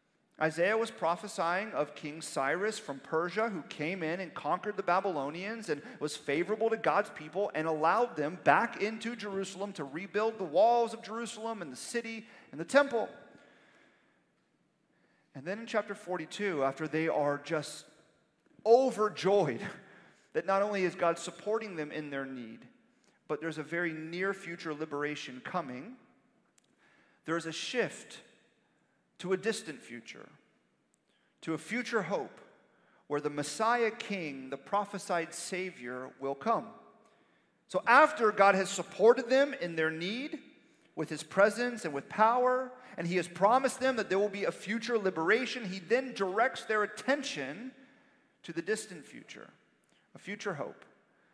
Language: English